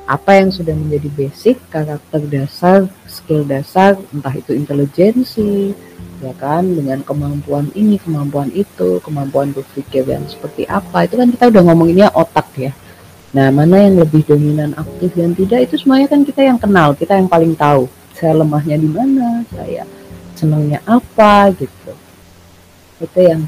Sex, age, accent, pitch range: female, 30-49, native, 140-195 Hz